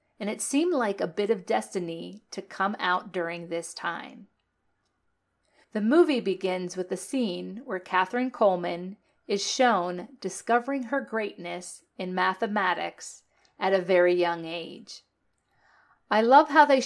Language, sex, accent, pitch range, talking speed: English, female, American, 185-240 Hz, 140 wpm